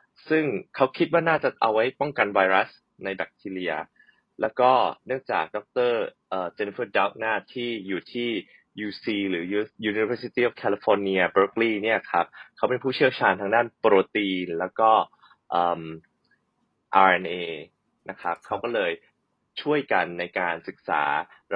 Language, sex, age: Thai, male, 20-39